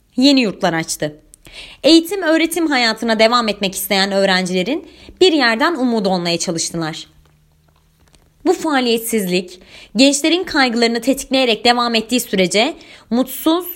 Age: 30-49